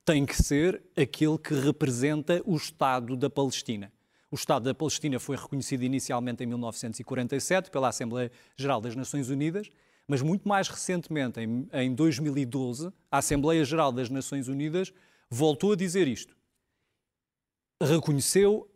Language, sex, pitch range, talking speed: Portuguese, male, 130-155 Hz, 135 wpm